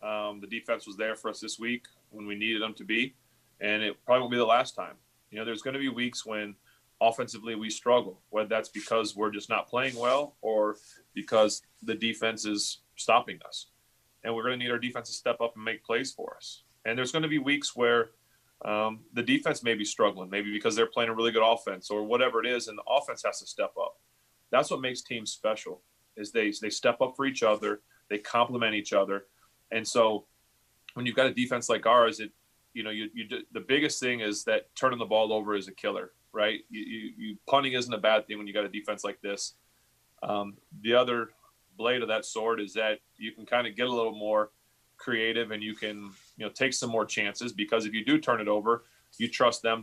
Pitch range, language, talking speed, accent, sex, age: 105-120 Hz, English, 230 wpm, American, male, 30-49